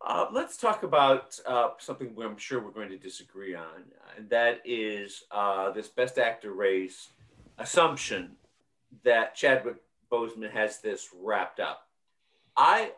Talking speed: 145 wpm